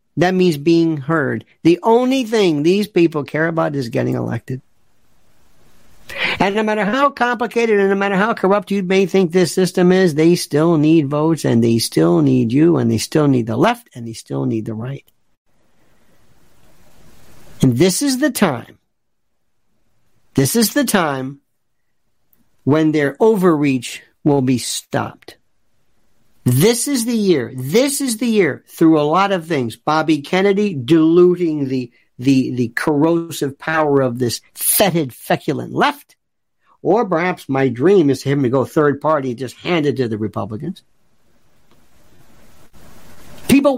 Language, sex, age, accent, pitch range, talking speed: English, male, 50-69, American, 135-215 Hz, 150 wpm